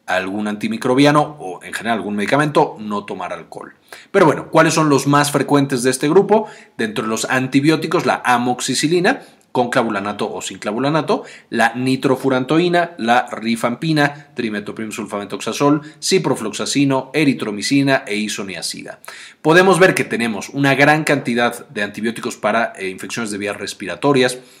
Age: 30-49